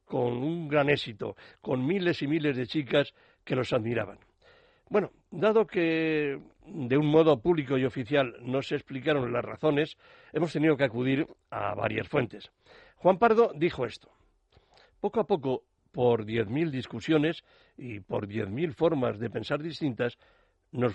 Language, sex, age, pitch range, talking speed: Spanish, male, 60-79, 135-190 Hz, 155 wpm